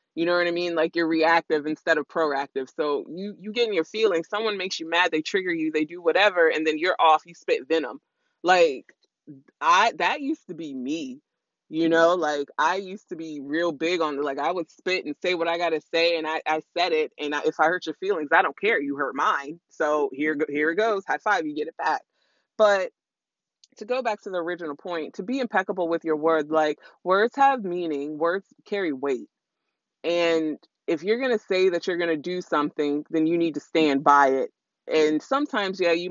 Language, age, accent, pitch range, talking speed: English, 20-39, American, 150-200 Hz, 225 wpm